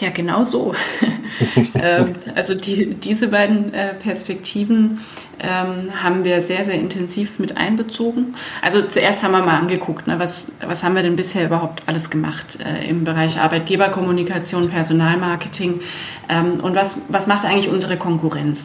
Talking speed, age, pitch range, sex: 150 wpm, 20-39, 170-195 Hz, female